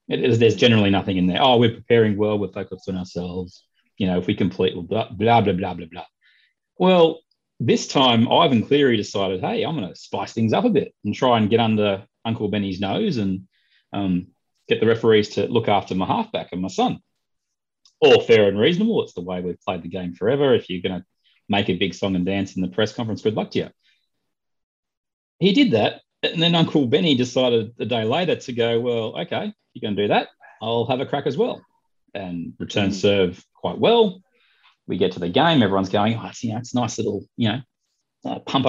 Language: English